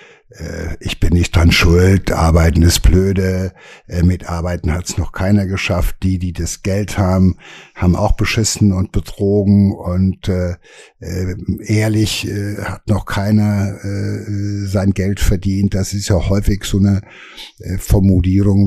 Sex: male